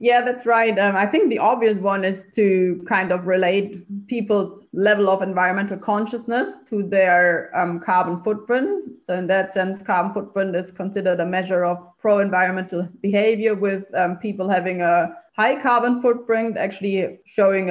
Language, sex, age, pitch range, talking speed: English, female, 30-49, 180-215 Hz, 160 wpm